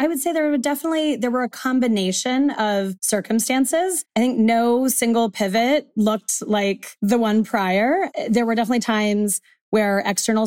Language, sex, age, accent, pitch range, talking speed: English, female, 30-49, American, 180-225 Hz, 160 wpm